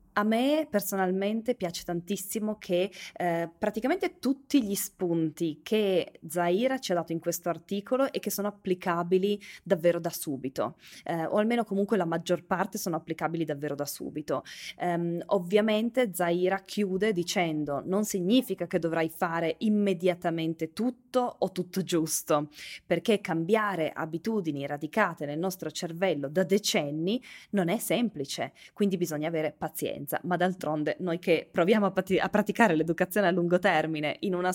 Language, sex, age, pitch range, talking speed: Italian, female, 20-39, 165-210 Hz, 145 wpm